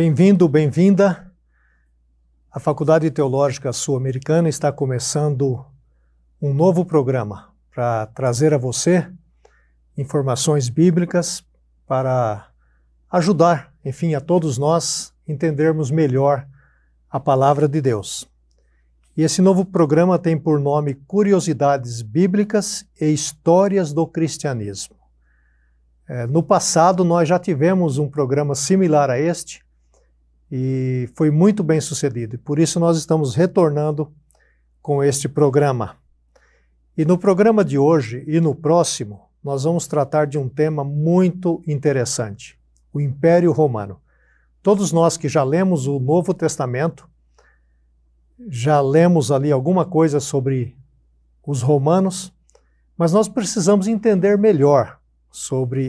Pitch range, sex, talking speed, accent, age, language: 120-165 Hz, male, 115 wpm, Brazilian, 60-79, Portuguese